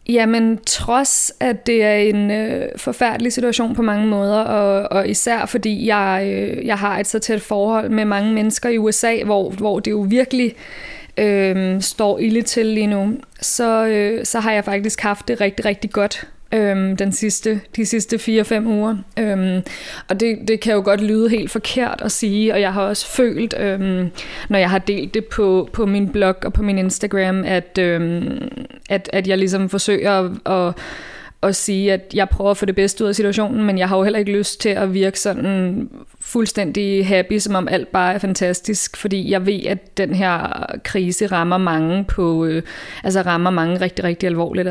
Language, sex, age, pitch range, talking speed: Danish, female, 20-39, 190-220 Hz, 185 wpm